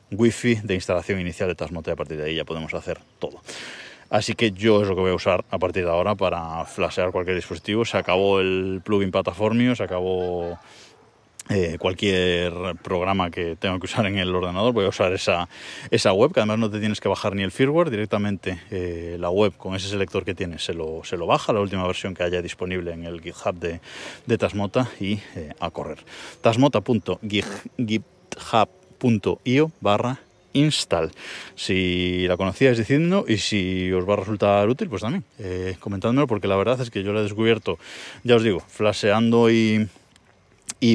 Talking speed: 190 wpm